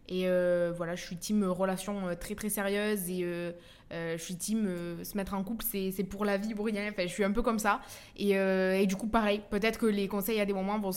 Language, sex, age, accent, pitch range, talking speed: French, female, 20-39, French, 190-225 Hz, 265 wpm